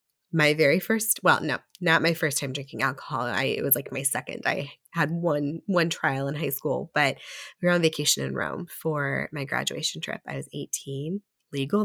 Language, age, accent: English, 20-39, American